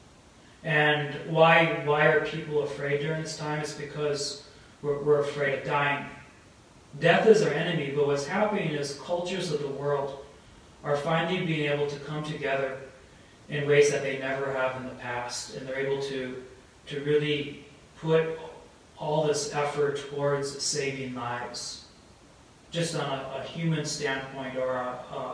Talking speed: 155 wpm